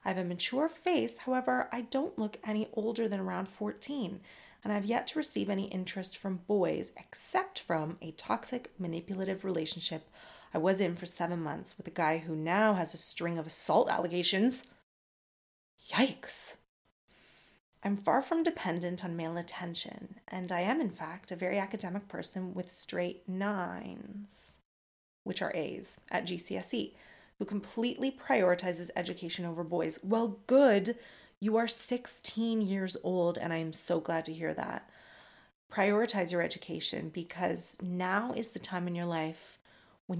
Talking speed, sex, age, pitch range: 155 wpm, female, 30-49, 170-210 Hz